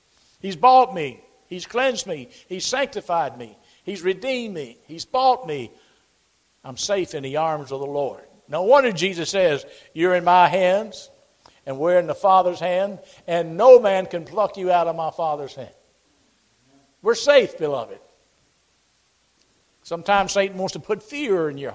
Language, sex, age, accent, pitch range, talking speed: English, male, 60-79, American, 155-205 Hz, 165 wpm